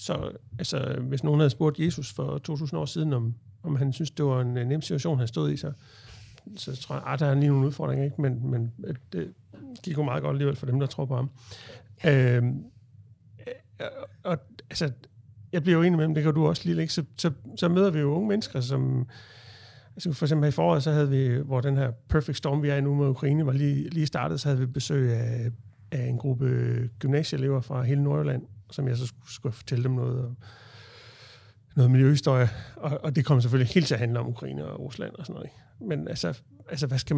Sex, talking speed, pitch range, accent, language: male, 230 wpm, 120-150 Hz, native, Danish